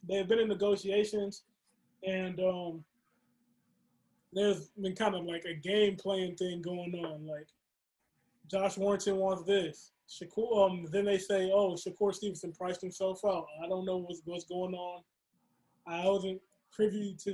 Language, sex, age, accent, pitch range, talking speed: English, male, 20-39, American, 180-210 Hz, 150 wpm